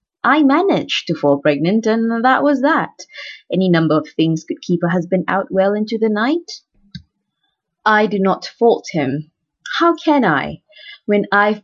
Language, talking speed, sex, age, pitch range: English, 165 wpm, female, 20-39, 175-240 Hz